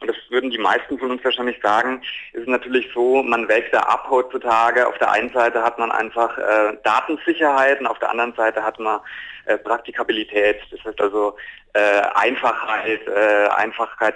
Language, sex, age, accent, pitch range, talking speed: German, male, 30-49, German, 115-140 Hz, 180 wpm